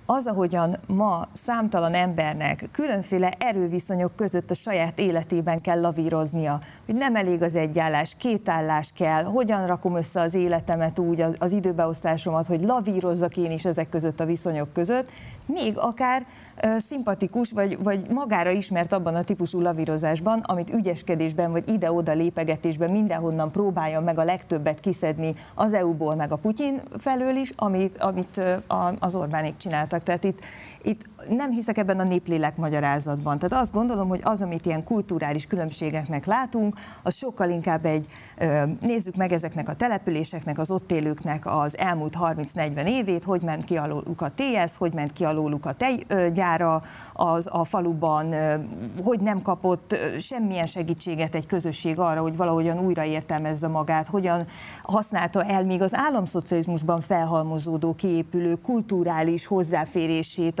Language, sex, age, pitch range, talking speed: Hungarian, female, 30-49, 160-195 Hz, 145 wpm